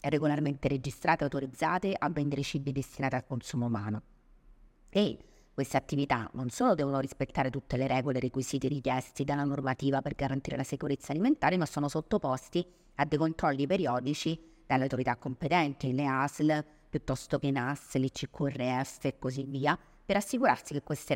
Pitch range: 135-160 Hz